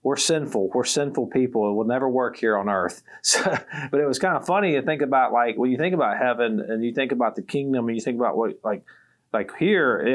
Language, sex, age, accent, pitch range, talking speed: English, male, 40-59, American, 110-135 Hz, 255 wpm